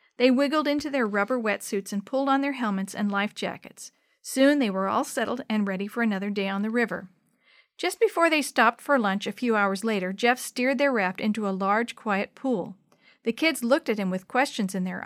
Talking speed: 220 wpm